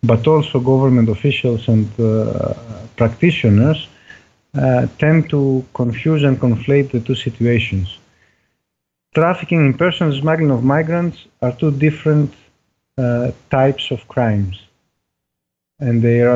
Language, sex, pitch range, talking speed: English, male, 115-140 Hz, 115 wpm